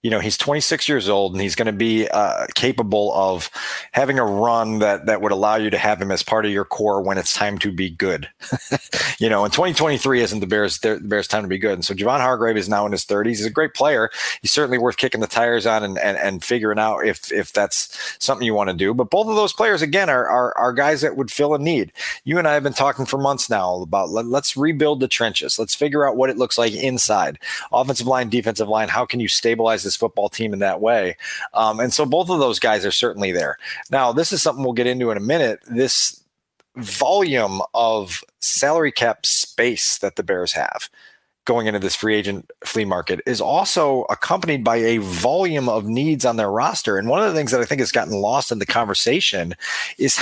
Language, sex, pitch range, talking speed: English, male, 105-135 Hz, 235 wpm